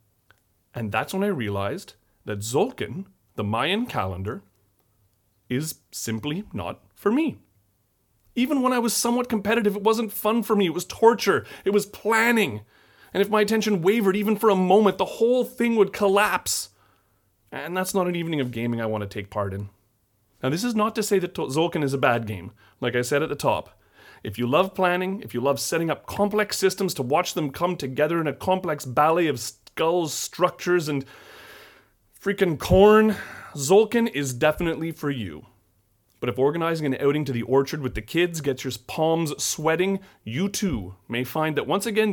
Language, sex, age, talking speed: English, male, 30-49, 185 wpm